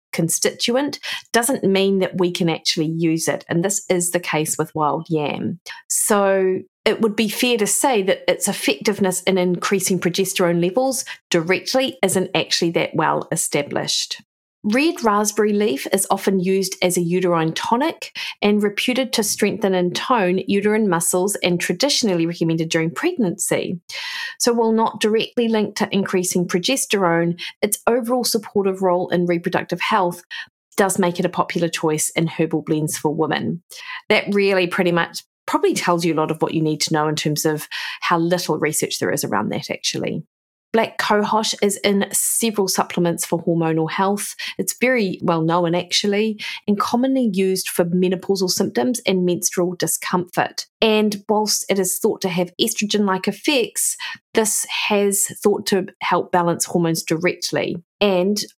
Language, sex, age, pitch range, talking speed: English, female, 40-59, 175-215 Hz, 155 wpm